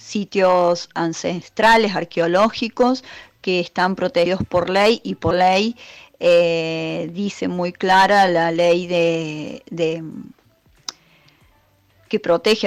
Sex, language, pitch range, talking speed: female, Spanish, 175-205 Hz, 100 wpm